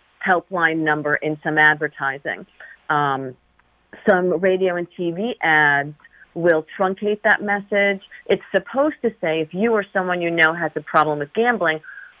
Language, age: English, 40-59